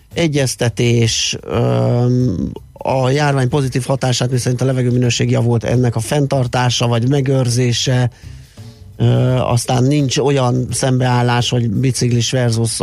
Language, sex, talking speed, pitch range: Hungarian, male, 105 wpm, 115-130 Hz